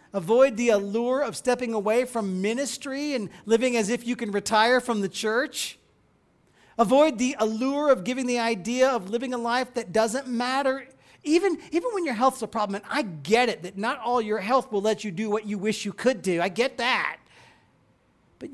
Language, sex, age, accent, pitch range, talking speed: English, male, 40-59, American, 195-245 Hz, 200 wpm